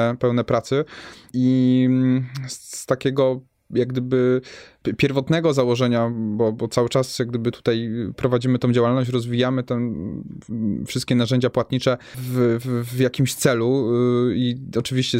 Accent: native